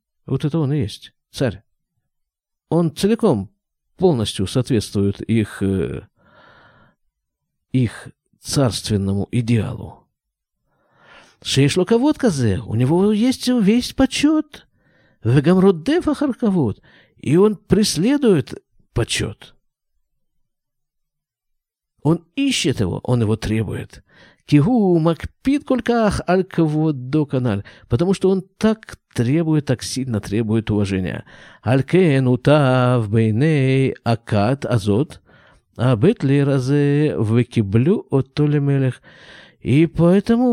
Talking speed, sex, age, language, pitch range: 90 wpm, male, 50-69, Russian, 115-185 Hz